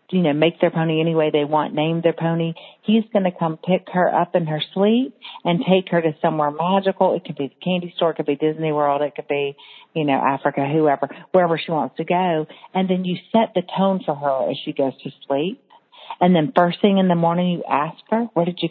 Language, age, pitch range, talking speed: English, 50-69, 155-185 Hz, 245 wpm